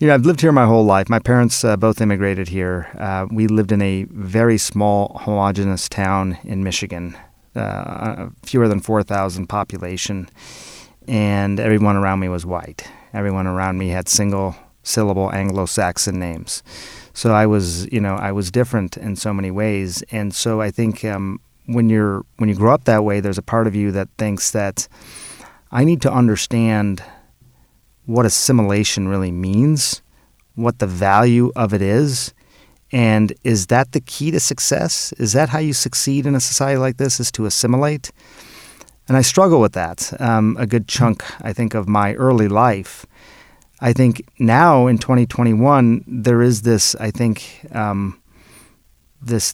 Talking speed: 170 wpm